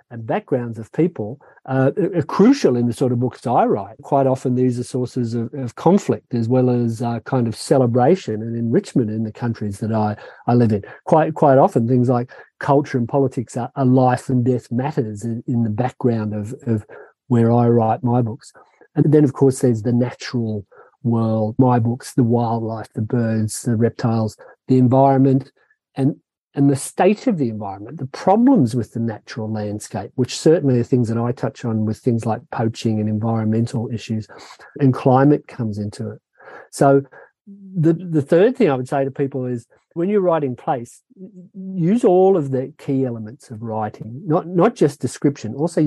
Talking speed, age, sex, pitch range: 185 wpm, 40-59, male, 115-140 Hz